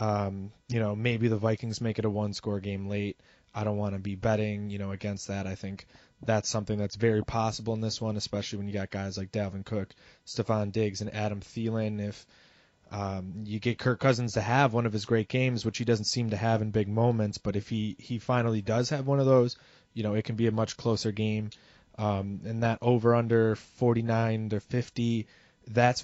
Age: 20-39